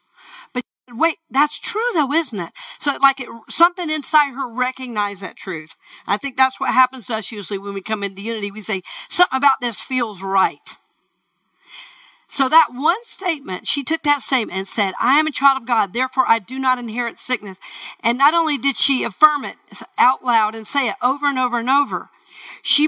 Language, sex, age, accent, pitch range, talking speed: English, female, 50-69, American, 215-290 Hz, 195 wpm